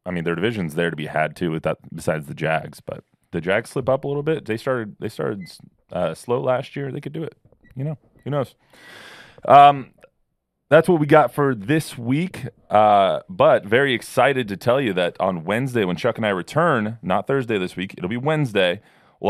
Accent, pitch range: American, 90-120 Hz